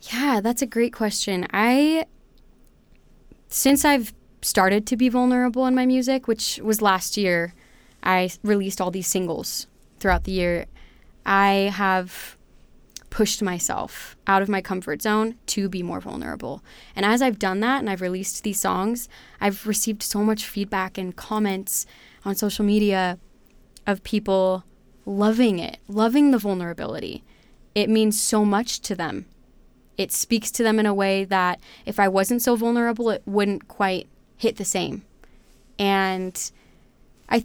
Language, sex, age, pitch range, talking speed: English, female, 20-39, 185-220 Hz, 150 wpm